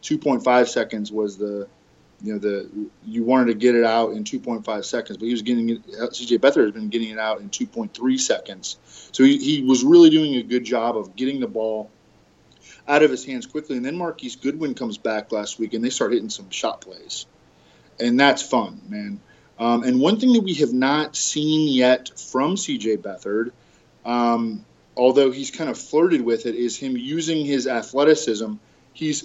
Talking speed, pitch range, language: 195 wpm, 115-155 Hz, English